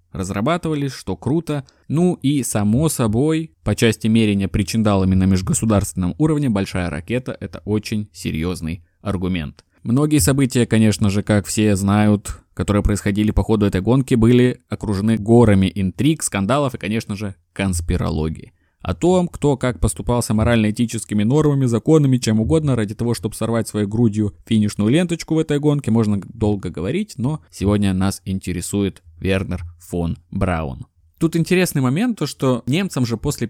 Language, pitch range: Russian, 95-125 Hz